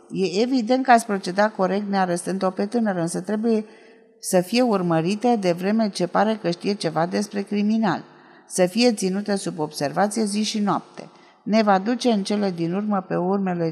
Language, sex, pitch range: Romanian, female, 175-220 Hz